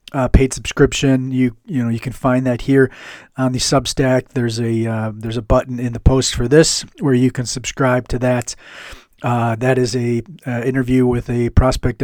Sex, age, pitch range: male, 40-59, 120-135 Hz